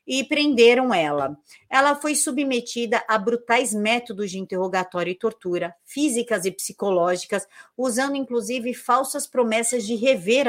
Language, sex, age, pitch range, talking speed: Portuguese, female, 50-69, 205-255 Hz, 125 wpm